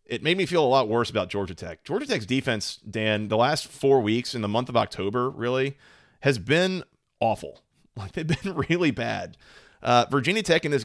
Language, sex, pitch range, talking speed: English, male, 115-155 Hz, 205 wpm